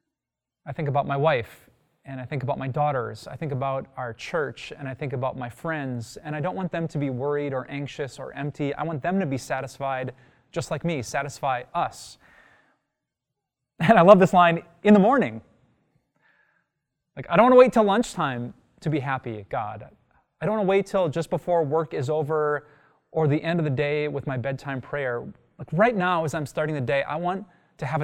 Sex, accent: male, American